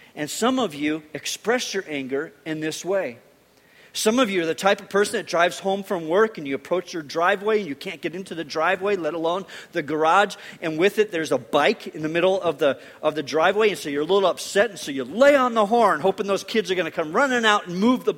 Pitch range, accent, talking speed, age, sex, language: 180-255 Hz, American, 255 wpm, 40-59, male, English